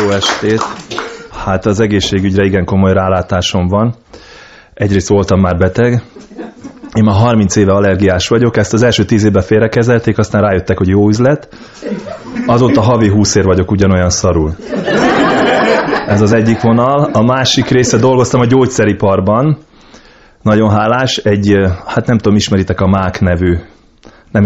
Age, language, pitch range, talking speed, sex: 20-39, Hungarian, 100-120 Hz, 140 wpm, male